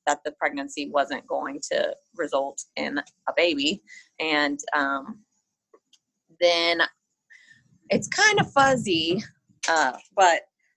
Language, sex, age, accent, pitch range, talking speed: English, female, 30-49, American, 160-225 Hz, 105 wpm